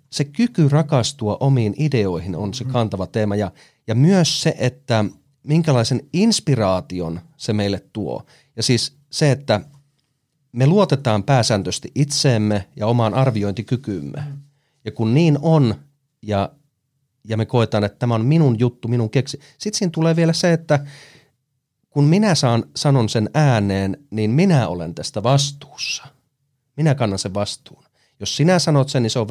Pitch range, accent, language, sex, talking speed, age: 115-145 Hz, native, Finnish, male, 150 wpm, 30-49